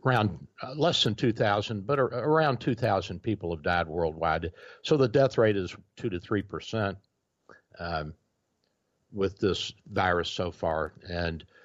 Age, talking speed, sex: 60-79, 155 wpm, male